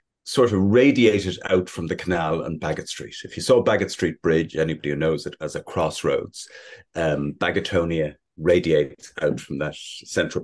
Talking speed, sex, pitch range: 170 wpm, male, 90-125 Hz